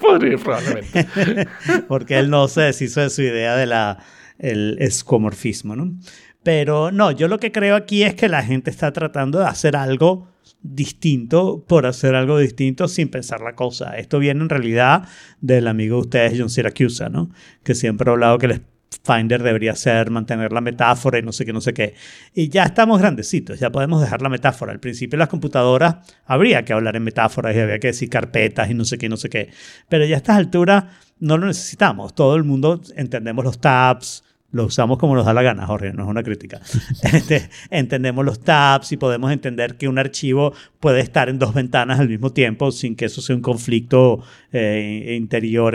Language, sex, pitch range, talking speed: Spanish, male, 115-150 Hz, 195 wpm